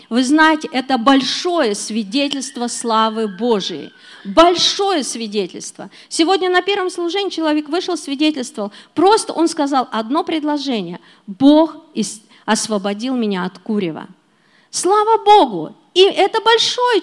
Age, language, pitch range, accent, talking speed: 40-59, Russian, 220-325 Hz, native, 110 wpm